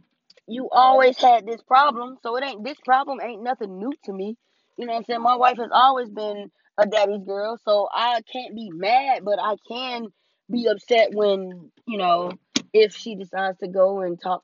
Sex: female